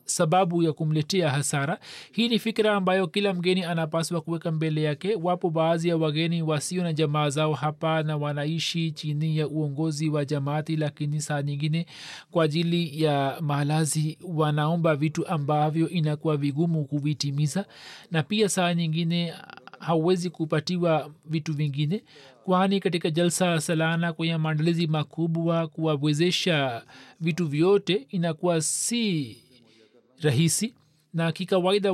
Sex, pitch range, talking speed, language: male, 145-170 Hz, 120 wpm, Swahili